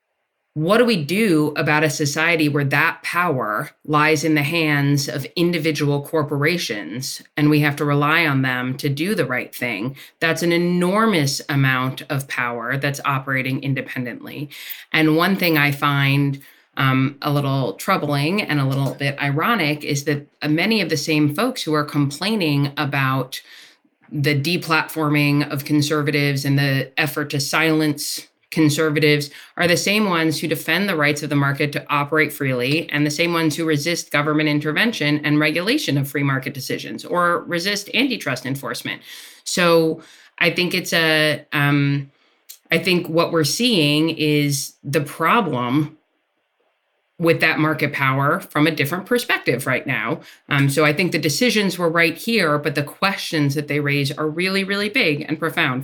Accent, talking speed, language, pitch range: American, 160 wpm, English, 145-165 Hz